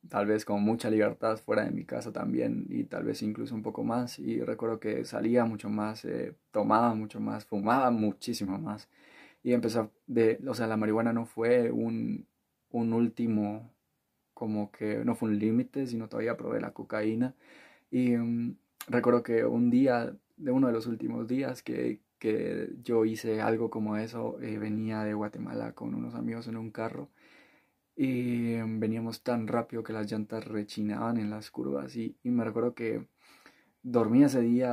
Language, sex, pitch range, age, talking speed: Spanish, male, 110-120 Hz, 20-39, 175 wpm